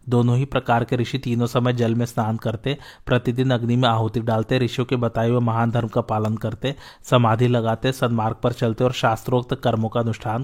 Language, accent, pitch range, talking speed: Hindi, native, 115-125 Hz, 195 wpm